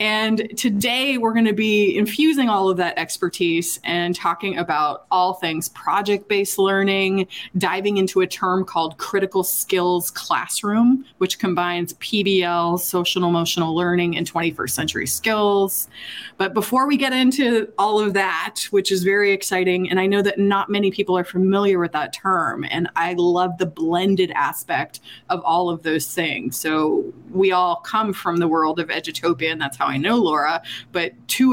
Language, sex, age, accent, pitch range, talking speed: English, female, 20-39, American, 175-205 Hz, 170 wpm